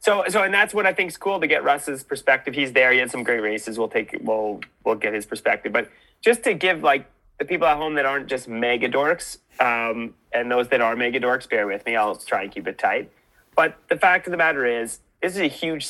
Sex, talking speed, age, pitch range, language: male, 260 wpm, 30-49, 115-155 Hz, English